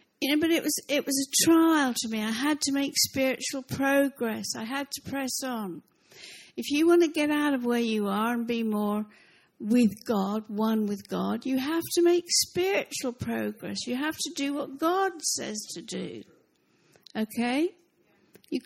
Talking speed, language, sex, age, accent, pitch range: 185 wpm, English, female, 60-79, British, 225-305 Hz